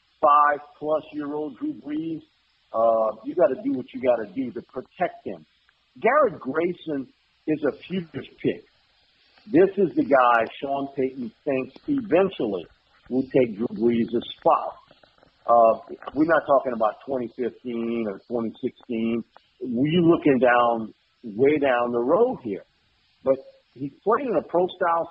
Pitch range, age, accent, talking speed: 120-195 Hz, 50-69, American, 145 wpm